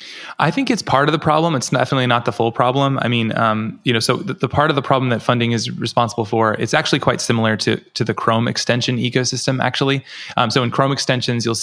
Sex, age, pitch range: male, 20-39, 110-130 Hz